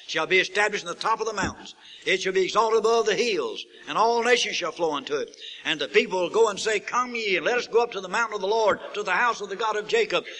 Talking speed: 290 wpm